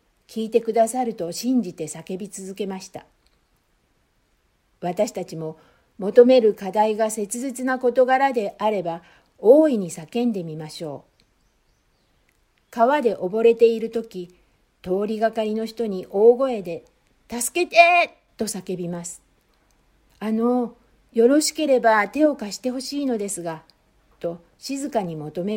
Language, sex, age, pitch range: Japanese, female, 60-79, 175-235 Hz